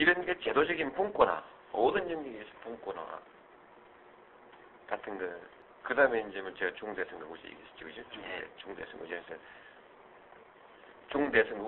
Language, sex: Korean, male